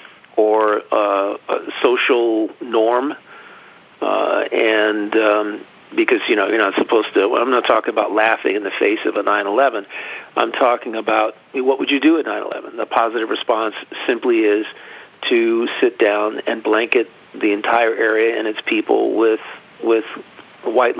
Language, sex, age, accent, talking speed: English, male, 50-69, American, 160 wpm